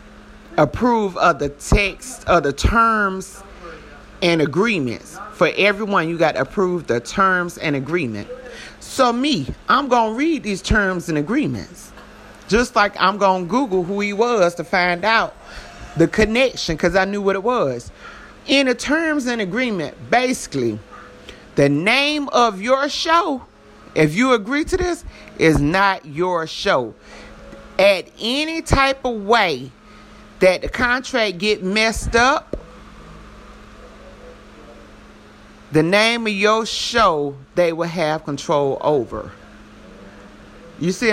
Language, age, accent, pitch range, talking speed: English, 30-49, American, 155-230 Hz, 135 wpm